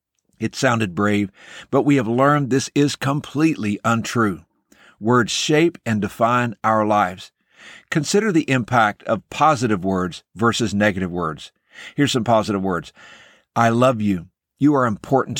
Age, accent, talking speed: 60-79, American, 140 wpm